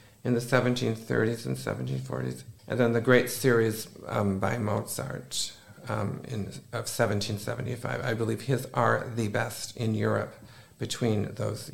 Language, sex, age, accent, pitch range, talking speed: Czech, male, 50-69, American, 115-130 Hz, 140 wpm